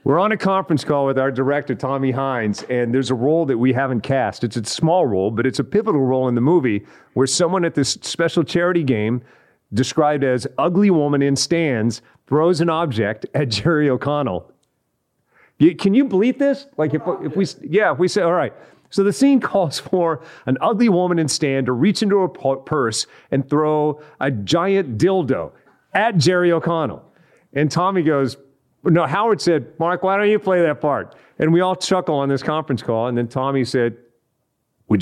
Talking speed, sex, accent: 190 wpm, male, American